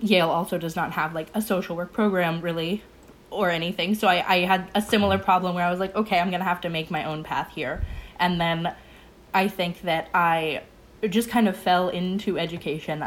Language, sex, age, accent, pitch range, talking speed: English, female, 20-39, American, 160-195 Hz, 210 wpm